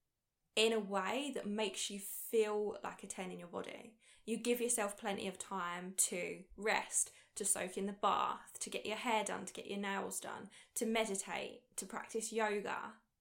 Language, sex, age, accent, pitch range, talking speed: English, female, 10-29, British, 200-230 Hz, 185 wpm